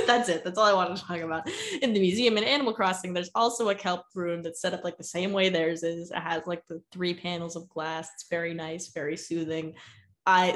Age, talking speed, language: 10-29, 245 wpm, English